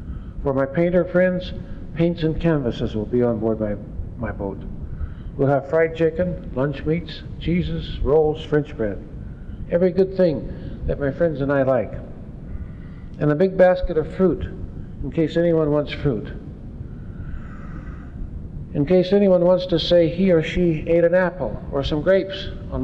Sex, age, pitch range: male, 60-79, 125-170 Hz